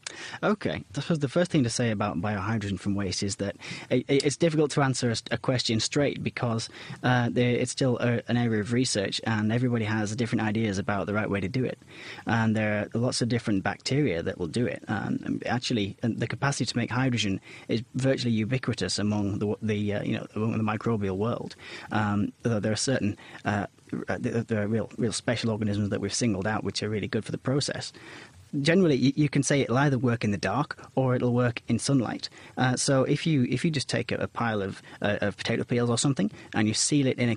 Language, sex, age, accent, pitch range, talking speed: English, male, 30-49, British, 110-130 Hz, 220 wpm